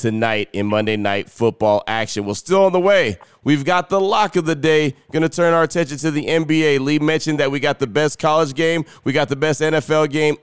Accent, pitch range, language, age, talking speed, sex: American, 115-145 Hz, English, 30-49, 235 wpm, male